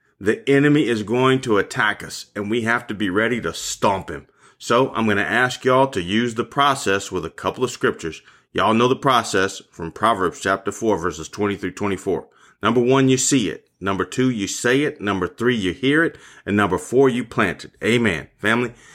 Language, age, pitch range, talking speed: English, 30-49, 100-130 Hz, 210 wpm